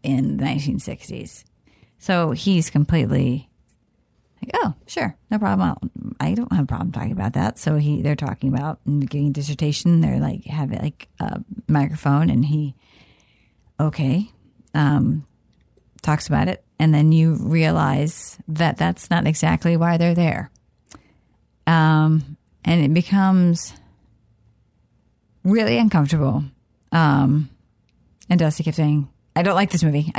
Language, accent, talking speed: English, American, 130 wpm